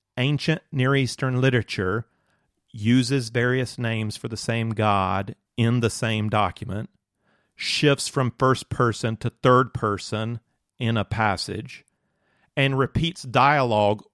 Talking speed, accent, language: 120 wpm, American, English